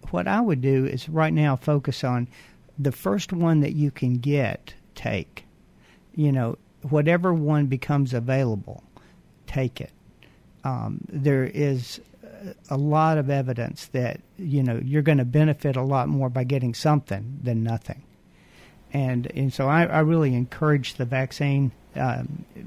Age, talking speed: 50-69, 150 wpm